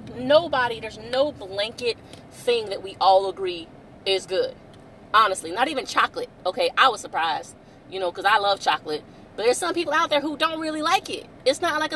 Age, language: 30-49, English